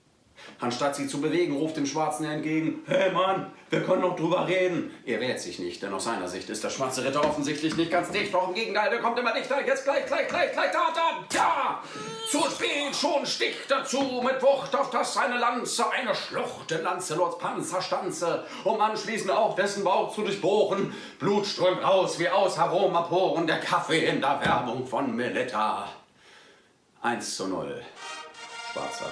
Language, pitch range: Romanian, 150-235 Hz